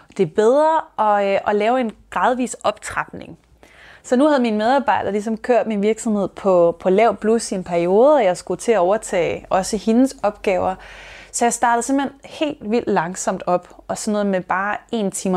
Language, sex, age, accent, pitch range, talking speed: Danish, female, 20-39, native, 185-230 Hz, 195 wpm